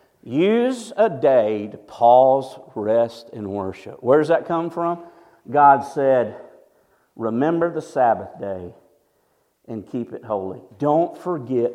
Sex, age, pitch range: male, 50-69, 130-190 Hz